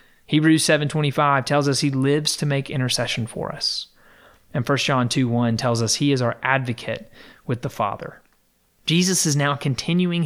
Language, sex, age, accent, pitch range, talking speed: English, male, 30-49, American, 120-145 Hz, 165 wpm